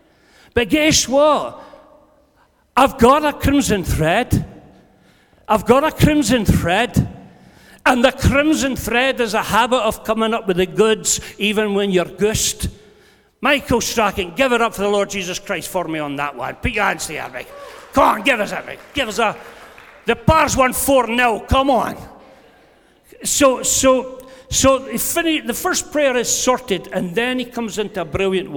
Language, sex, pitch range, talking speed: English, male, 195-270 Hz, 165 wpm